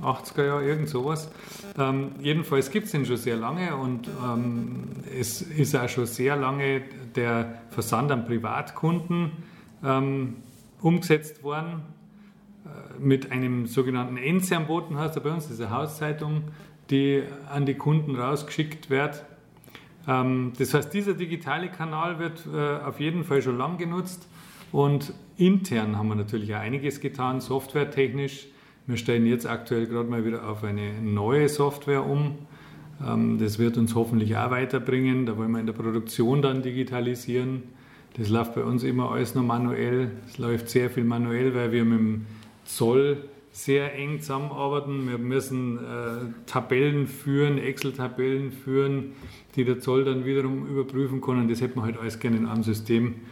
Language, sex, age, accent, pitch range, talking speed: German, male, 40-59, German, 120-145 Hz, 150 wpm